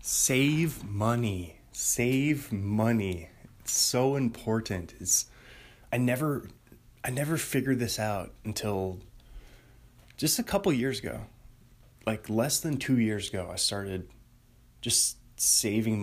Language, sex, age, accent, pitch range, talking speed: English, male, 20-39, American, 105-125 Hz, 115 wpm